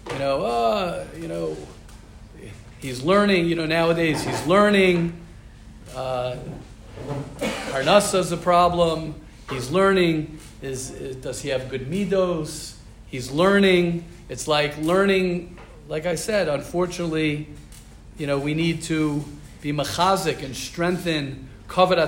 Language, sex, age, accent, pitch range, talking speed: English, male, 40-59, American, 130-175 Hz, 115 wpm